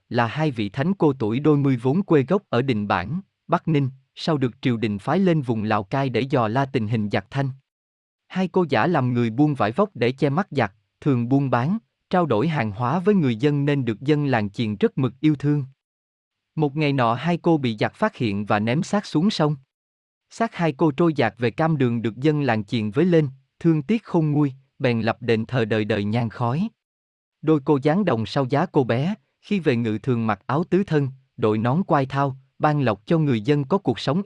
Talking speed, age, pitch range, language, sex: 230 wpm, 20-39, 115-160 Hz, Vietnamese, male